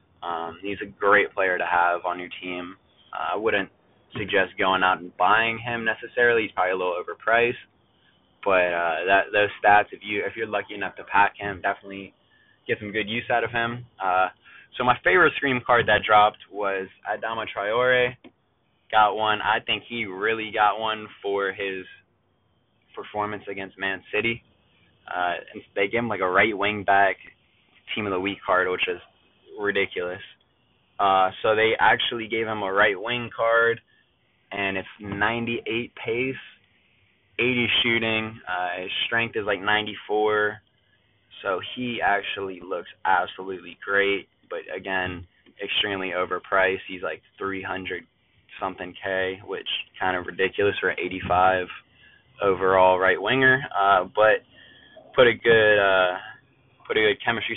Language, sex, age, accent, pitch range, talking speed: English, male, 20-39, American, 95-110 Hz, 150 wpm